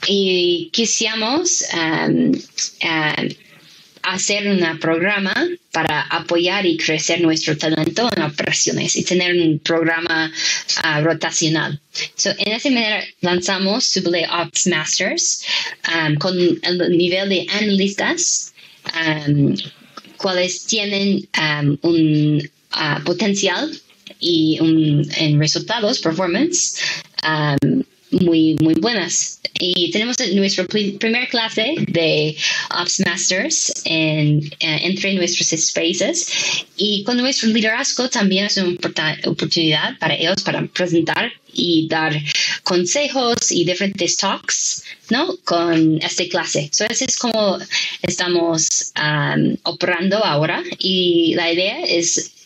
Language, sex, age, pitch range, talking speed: Spanish, female, 20-39, 160-200 Hz, 110 wpm